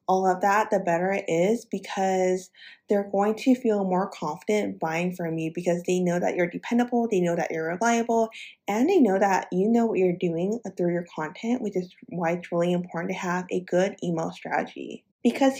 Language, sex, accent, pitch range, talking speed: English, female, American, 175-220 Hz, 205 wpm